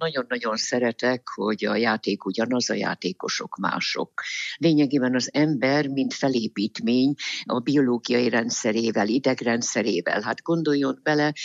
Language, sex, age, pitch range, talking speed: Hungarian, female, 60-79, 120-150 Hz, 110 wpm